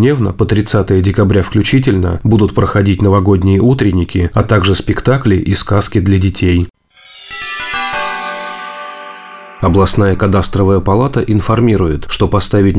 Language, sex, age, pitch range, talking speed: Russian, male, 30-49, 95-105 Hz, 100 wpm